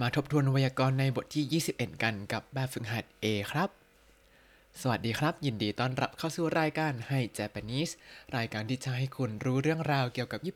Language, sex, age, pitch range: Thai, male, 20-39, 110-140 Hz